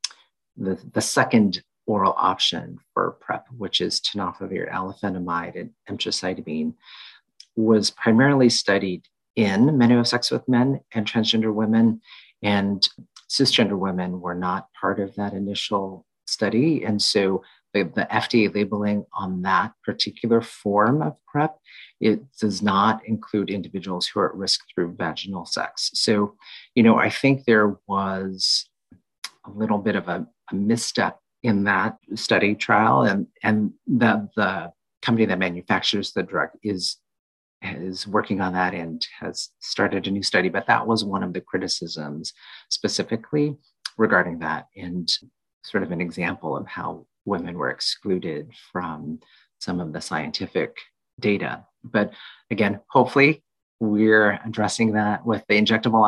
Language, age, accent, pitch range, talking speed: English, 40-59, American, 95-110 Hz, 140 wpm